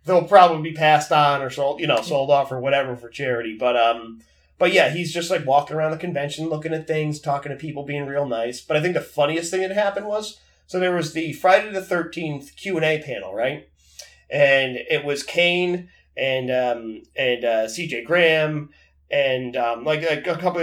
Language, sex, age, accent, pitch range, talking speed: English, male, 30-49, American, 125-175 Hz, 210 wpm